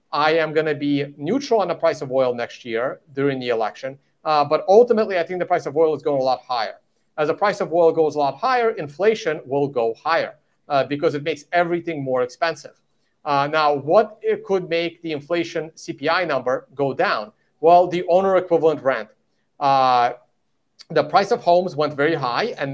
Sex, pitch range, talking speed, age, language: male, 140-195 Hz, 200 wpm, 40-59, English